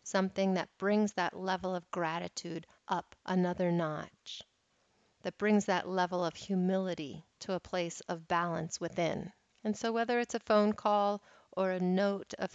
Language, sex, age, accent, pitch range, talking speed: English, female, 30-49, American, 180-215 Hz, 160 wpm